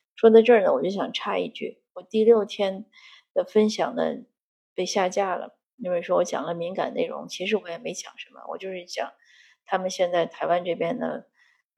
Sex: female